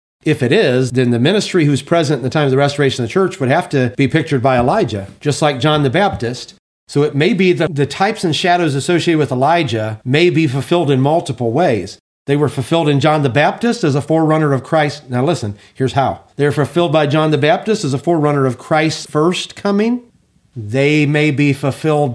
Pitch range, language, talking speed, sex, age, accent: 125-185 Hz, English, 215 wpm, male, 40-59, American